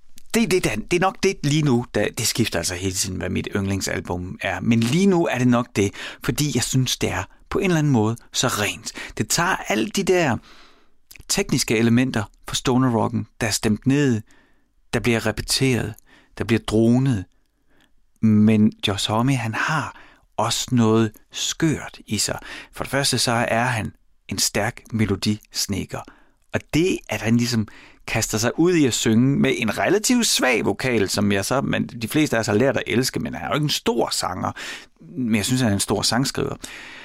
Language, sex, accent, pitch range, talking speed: Danish, male, native, 110-135 Hz, 200 wpm